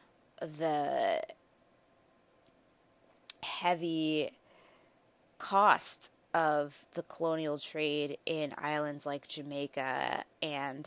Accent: American